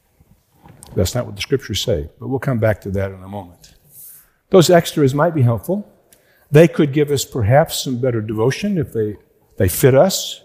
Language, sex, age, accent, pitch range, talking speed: English, male, 50-69, American, 100-135 Hz, 190 wpm